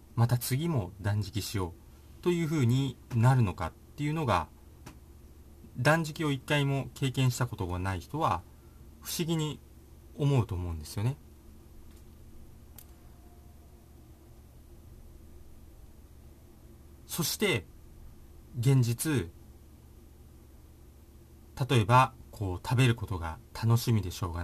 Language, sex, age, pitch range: Japanese, male, 40-59, 75-120 Hz